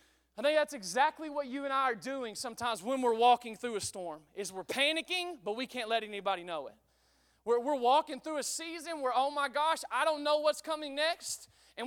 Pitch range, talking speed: 240-295 Hz, 220 wpm